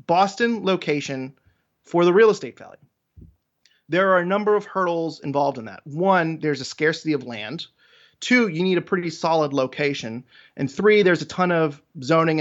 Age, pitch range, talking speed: 30-49, 140-180 Hz, 175 wpm